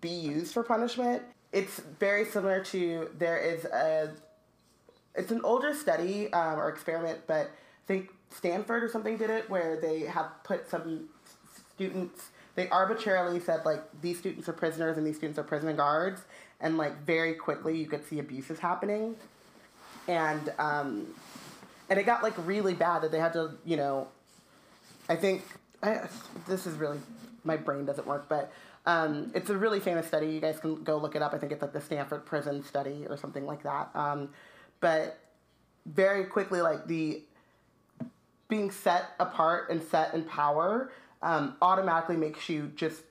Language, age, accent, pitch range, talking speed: English, 20-39, American, 155-190 Hz, 170 wpm